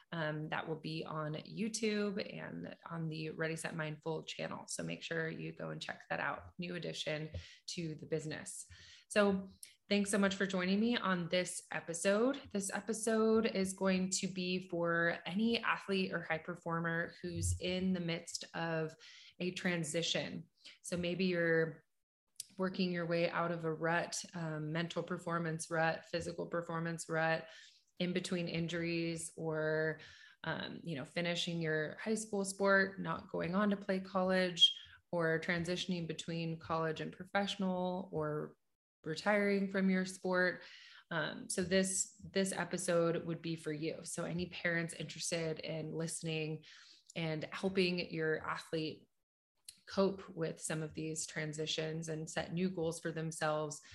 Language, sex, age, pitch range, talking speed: English, female, 20-39, 160-190 Hz, 145 wpm